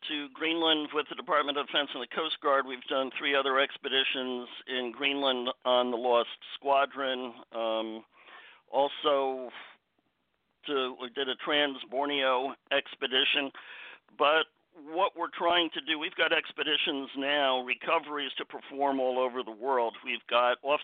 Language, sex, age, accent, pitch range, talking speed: English, male, 50-69, American, 130-145 Hz, 145 wpm